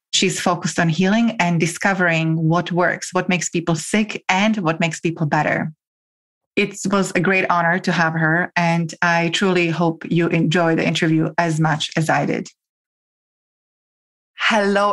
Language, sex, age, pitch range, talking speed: English, female, 30-49, 165-195 Hz, 155 wpm